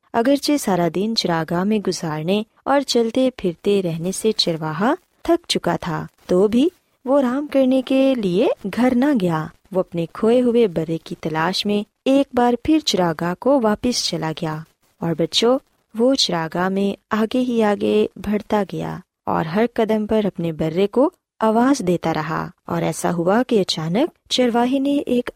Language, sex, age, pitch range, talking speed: Urdu, female, 20-39, 170-250 Hz, 165 wpm